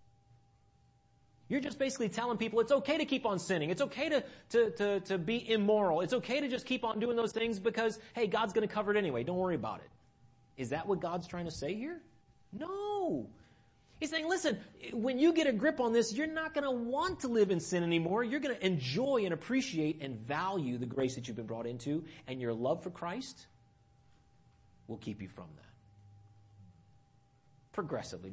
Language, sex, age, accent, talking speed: English, male, 30-49, American, 200 wpm